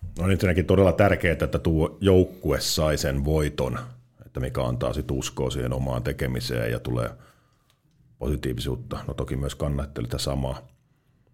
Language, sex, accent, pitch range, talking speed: Finnish, male, native, 70-90 Hz, 140 wpm